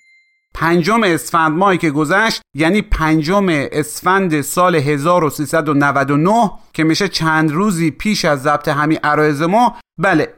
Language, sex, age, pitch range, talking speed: Persian, male, 30-49, 145-185 Hz, 120 wpm